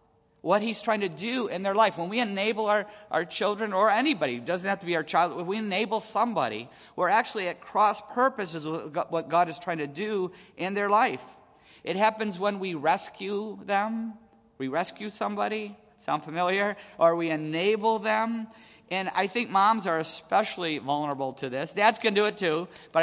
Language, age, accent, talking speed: English, 50-69, American, 190 wpm